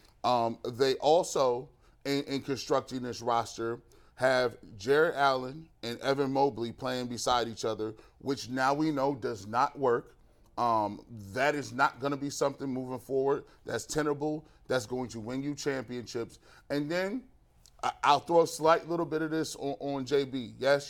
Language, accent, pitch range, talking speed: English, American, 125-155 Hz, 165 wpm